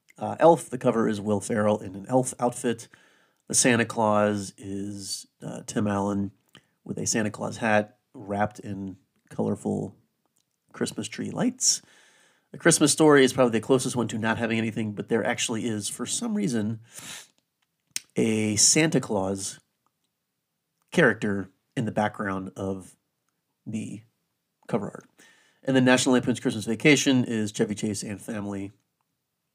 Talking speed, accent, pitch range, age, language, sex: 140 wpm, American, 100-125 Hz, 30-49, English, male